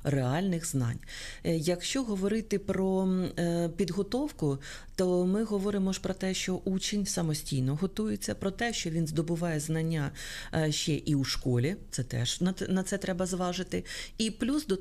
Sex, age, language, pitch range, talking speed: female, 40-59, Ukrainian, 140-185 Hz, 140 wpm